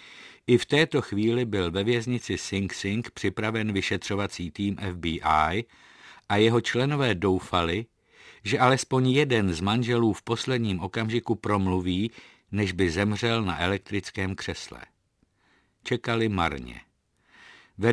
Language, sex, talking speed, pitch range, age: Czech, male, 115 wpm, 95-110 Hz, 50-69